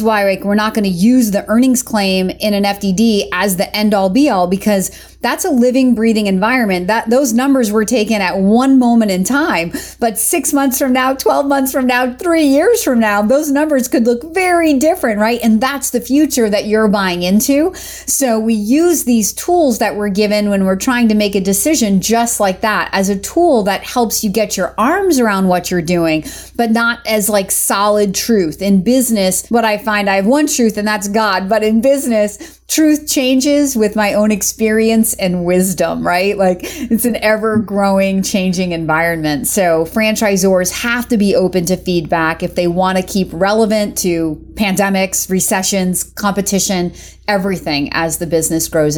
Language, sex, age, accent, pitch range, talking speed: English, female, 30-49, American, 195-250 Hz, 185 wpm